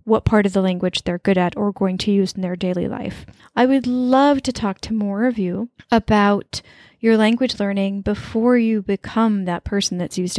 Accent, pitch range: American, 195-230 Hz